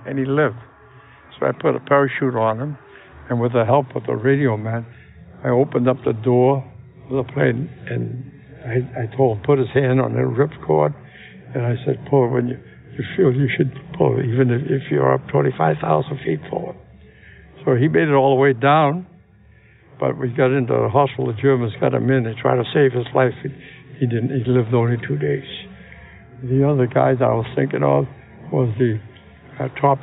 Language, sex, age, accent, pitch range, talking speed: Greek, male, 60-79, American, 115-135 Hz, 205 wpm